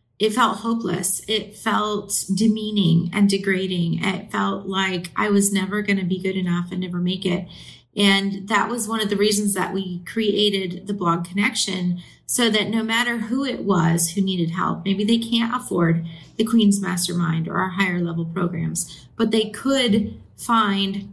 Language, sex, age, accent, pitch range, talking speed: English, female, 30-49, American, 185-220 Hz, 175 wpm